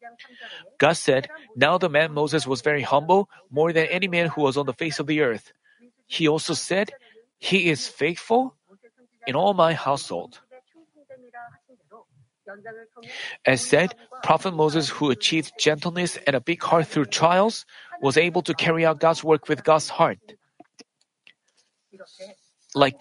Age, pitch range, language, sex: 40-59, 150-200 Hz, Korean, male